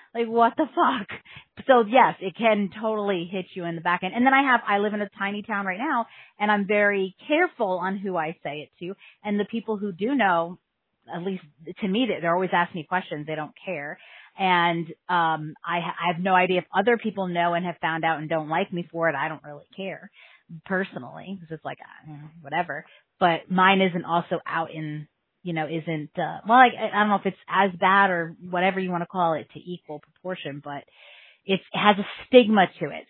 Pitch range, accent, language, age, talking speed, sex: 165-200 Hz, American, English, 30-49, 225 wpm, female